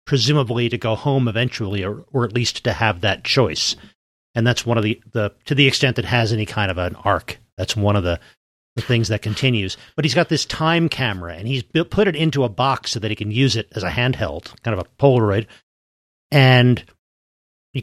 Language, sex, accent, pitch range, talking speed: English, male, American, 110-145 Hz, 220 wpm